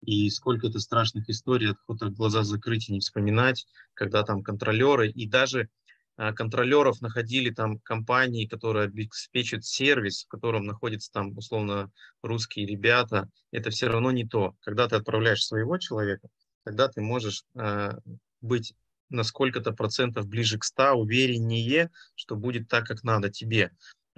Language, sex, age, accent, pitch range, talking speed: Russian, male, 20-39, native, 105-120 Hz, 145 wpm